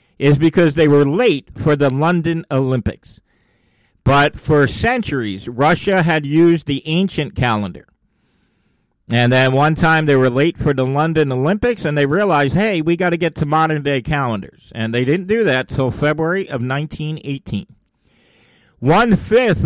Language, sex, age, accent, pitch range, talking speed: English, male, 50-69, American, 130-185 Hz, 155 wpm